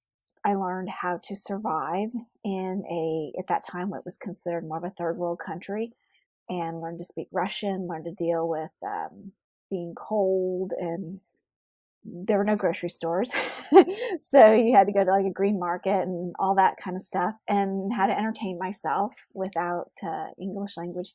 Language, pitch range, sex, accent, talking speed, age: English, 180-210 Hz, female, American, 175 wpm, 30-49